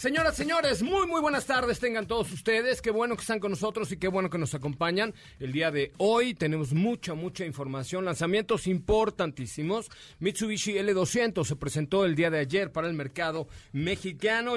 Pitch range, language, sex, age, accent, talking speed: 150-205 Hz, Spanish, male, 40-59, Mexican, 175 wpm